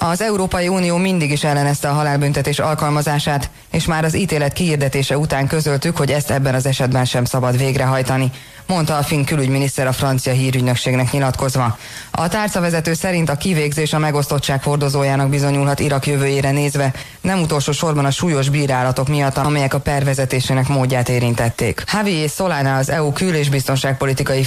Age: 20-39